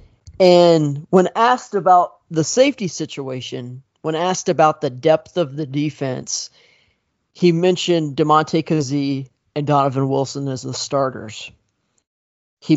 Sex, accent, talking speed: male, American, 120 wpm